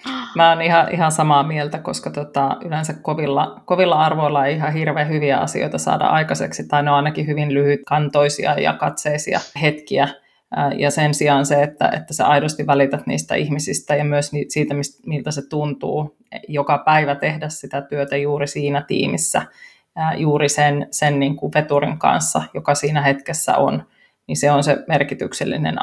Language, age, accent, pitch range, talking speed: Finnish, 30-49, native, 145-155 Hz, 160 wpm